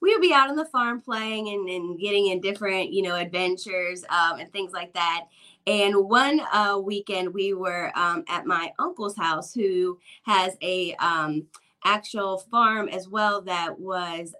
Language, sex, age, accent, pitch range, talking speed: English, female, 20-39, American, 180-220 Hz, 175 wpm